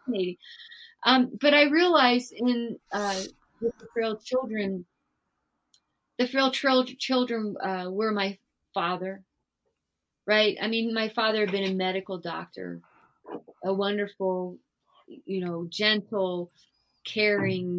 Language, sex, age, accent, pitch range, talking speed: English, female, 30-49, American, 175-220 Hz, 115 wpm